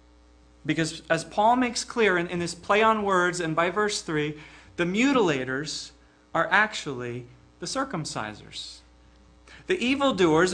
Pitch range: 130-205 Hz